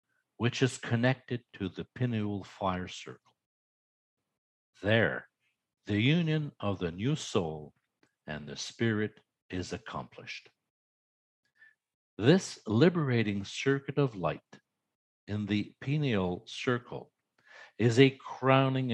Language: English